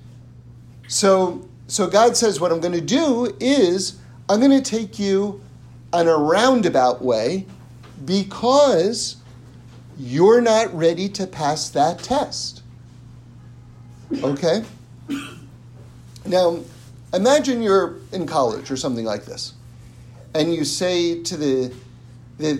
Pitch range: 120-200 Hz